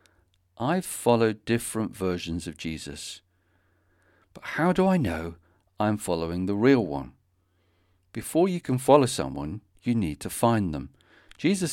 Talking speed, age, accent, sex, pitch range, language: 140 wpm, 50-69, British, male, 90-125 Hz, English